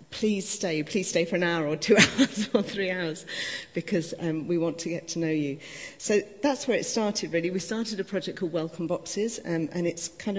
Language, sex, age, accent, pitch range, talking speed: English, female, 40-59, British, 155-185 Hz, 225 wpm